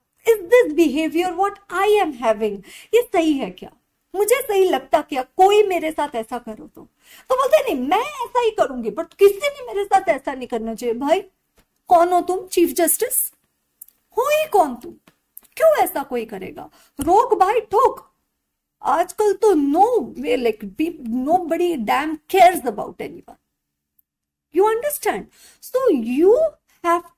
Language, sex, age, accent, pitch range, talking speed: Hindi, female, 50-69, native, 275-390 Hz, 65 wpm